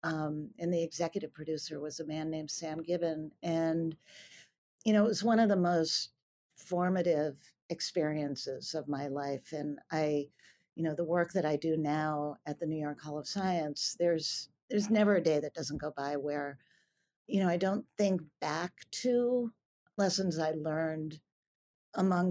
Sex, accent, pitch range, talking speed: female, American, 150-185 Hz, 170 wpm